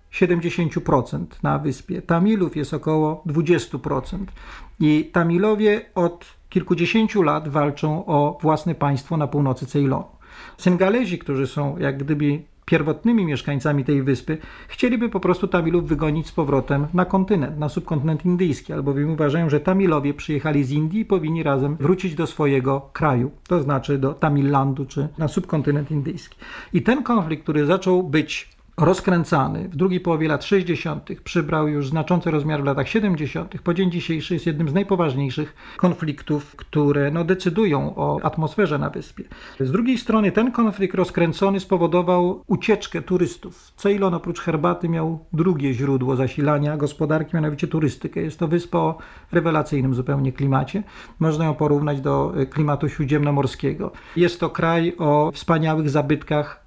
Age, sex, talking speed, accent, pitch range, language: 40-59, male, 140 wpm, native, 145-180 Hz, Polish